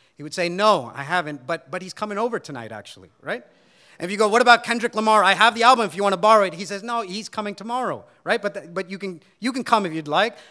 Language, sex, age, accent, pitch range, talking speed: English, male, 40-59, American, 140-200 Hz, 285 wpm